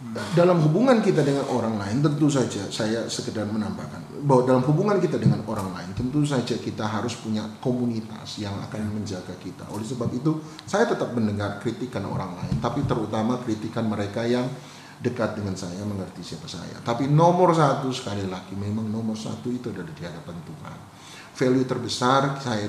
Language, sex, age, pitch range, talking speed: Indonesian, male, 30-49, 100-130 Hz, 170 wpm